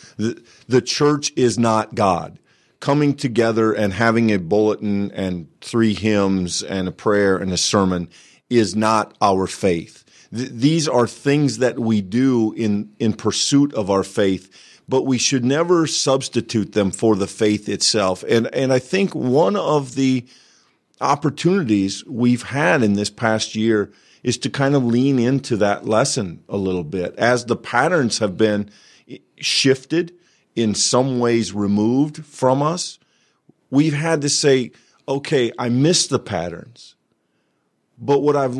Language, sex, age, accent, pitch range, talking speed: English, male, 50-69, American, 100-135 Hz, 150 wpm